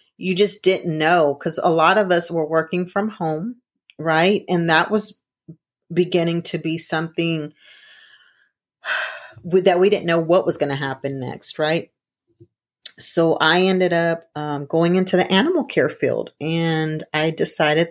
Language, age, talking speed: English, 40-59, 160 wpm